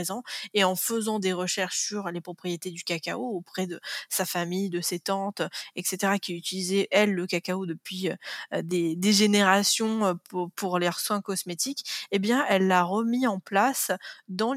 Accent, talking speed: French, 165 wpm